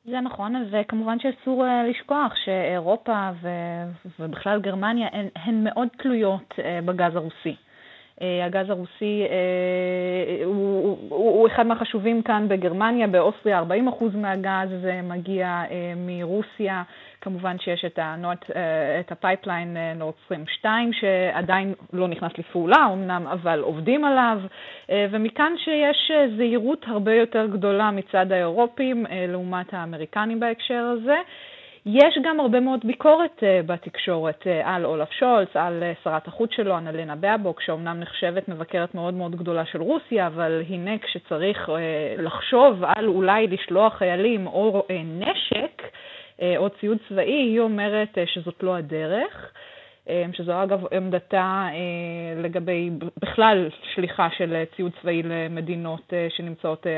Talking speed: 115 wpm